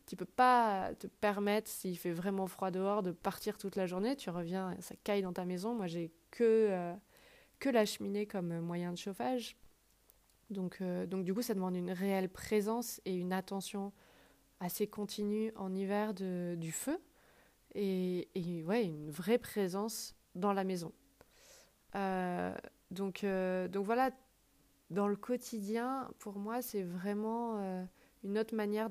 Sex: female